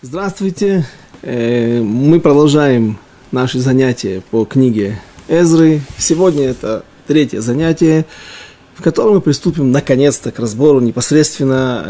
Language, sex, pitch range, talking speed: Russian, male, 120-165 Hz, 100 wpm